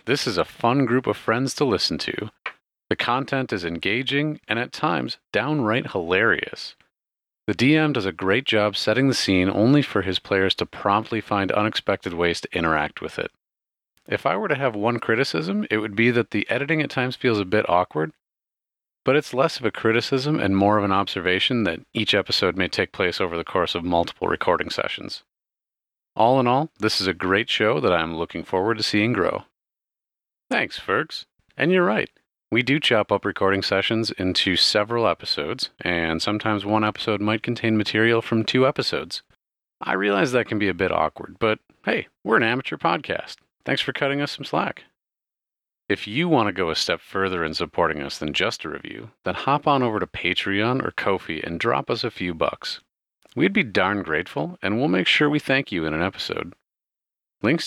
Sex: male